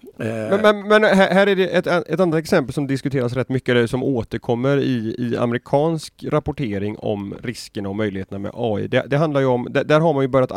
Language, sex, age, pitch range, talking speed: Swedish, male, 30-49, 105-135 Hz, 205 wpm